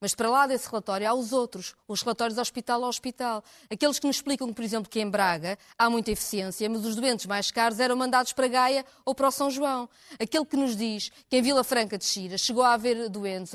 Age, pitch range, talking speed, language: 20-39, 215-280 Hz, 235 wpm, Portuguese